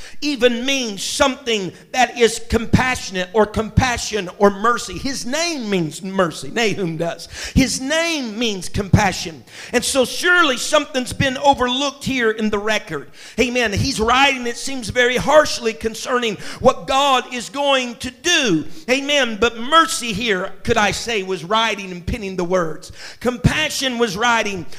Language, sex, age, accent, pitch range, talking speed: English, male, 50-69, American, 210-260 Hz, 145 wpm